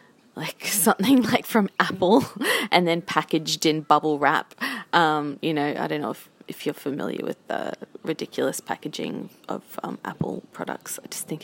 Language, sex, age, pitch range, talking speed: English, female, 20-39, 160-215 Hz, 170 wpm